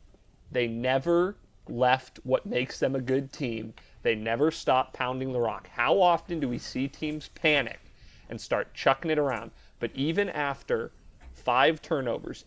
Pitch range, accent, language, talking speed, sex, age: 120-155 Hz, American, English, 155 wpm, male, 30-49